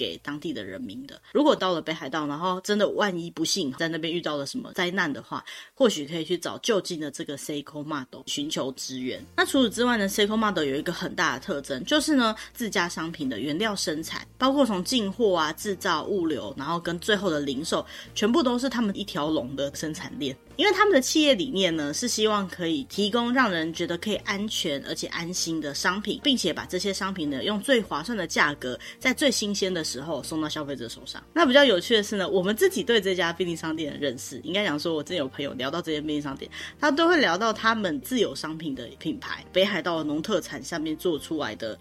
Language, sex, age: Chinese, female, 20-39